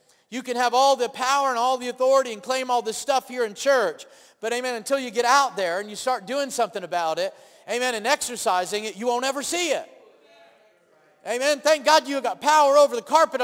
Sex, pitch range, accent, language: male, 220-270 Hz, American, English